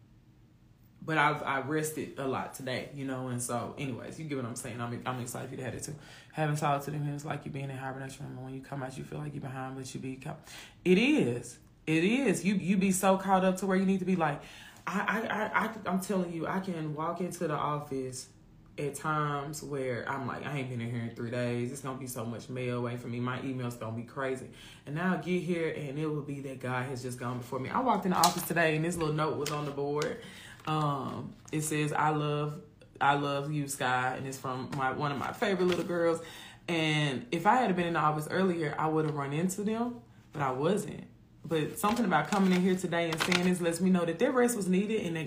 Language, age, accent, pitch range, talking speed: English, 20-39, American, 130-170 Hz, 255 wpm